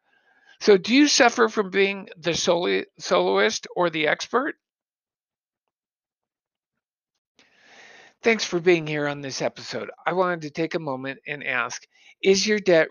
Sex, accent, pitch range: male, American, 155-195 Hz